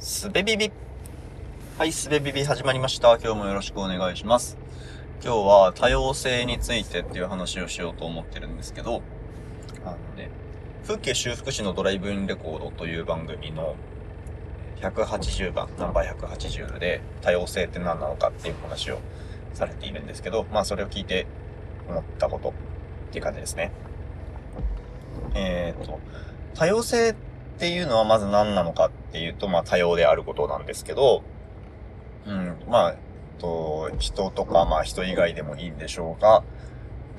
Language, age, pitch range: Japanese, 20-39, 85-115 Hz